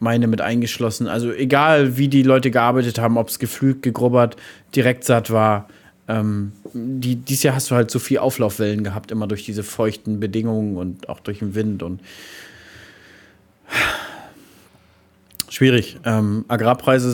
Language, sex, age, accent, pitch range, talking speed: German, male, 30-49, German, 105-130 Hz, 145 wpm